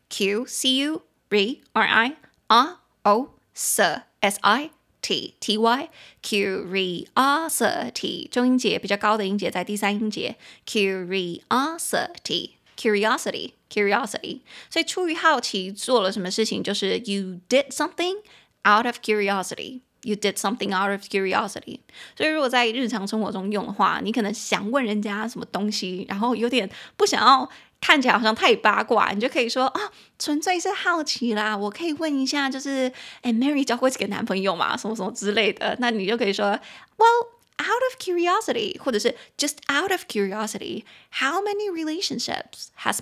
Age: 20-39